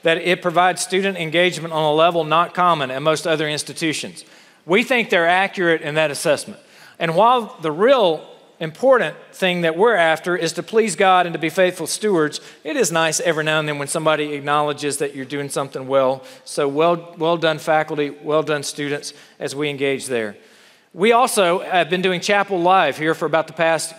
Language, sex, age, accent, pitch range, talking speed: English, male, 40-59, American, 160-200 Hz, 195 wpm